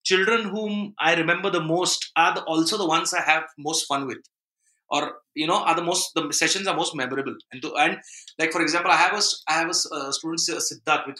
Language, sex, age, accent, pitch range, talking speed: Marathi, male, 30-49, native, 140-210 Hz, 225 wpm